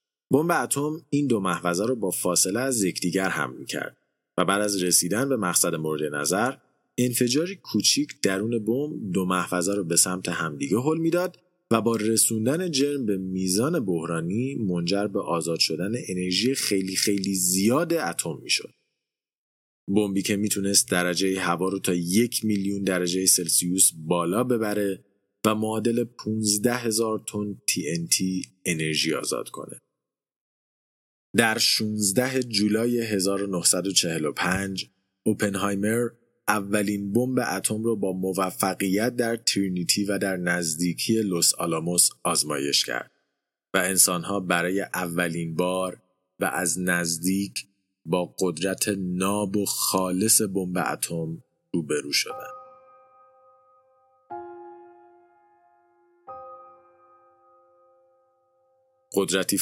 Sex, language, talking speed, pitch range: male, Persian, 110 wpm, 90-120 Hz